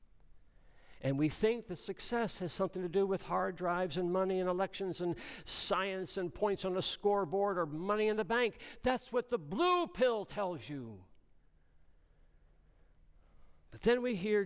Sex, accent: male, American